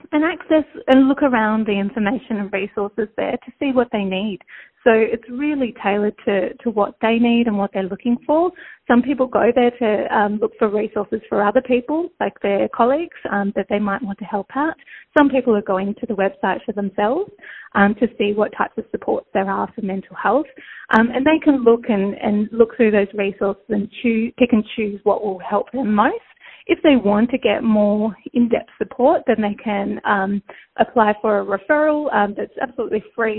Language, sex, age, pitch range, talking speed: Malayalam, female, 30-49, 205-255 Hz, 205 wpm